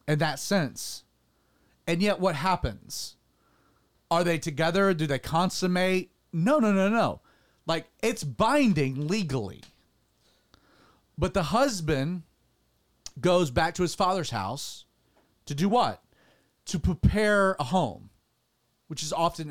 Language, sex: English, male